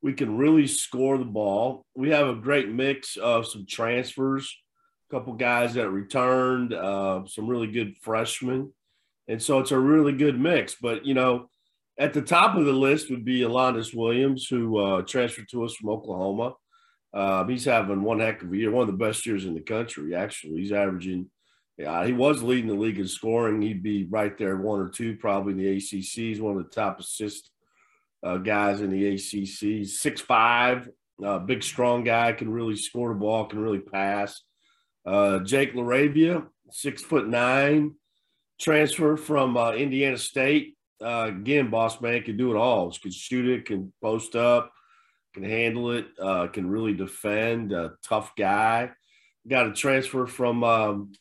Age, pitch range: 50-69, 105-130 Hz